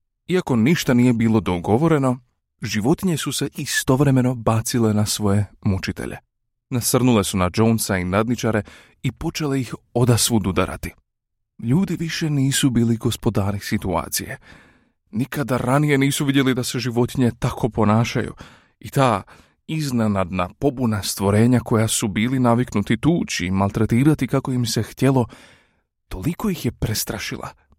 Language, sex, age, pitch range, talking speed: Croatian, male, 30-49, 95-125 Hz, 125 wpm